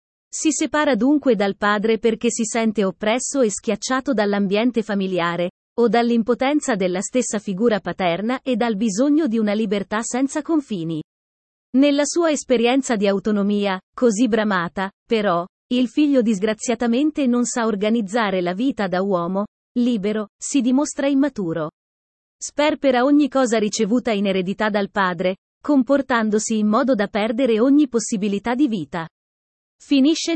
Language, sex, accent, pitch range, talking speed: Italian, female, native, 200-265 Hz, 130 wpm